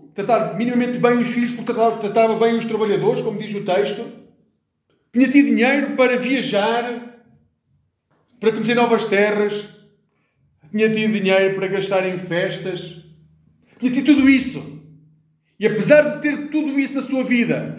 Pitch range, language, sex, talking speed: 145-200 Hz, Portuguese, male, 135 wpm